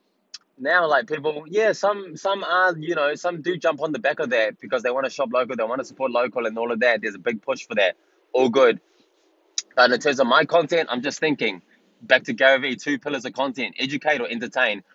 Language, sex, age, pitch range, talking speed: English, male, 20-39, 115-155 Hz, 235 wpm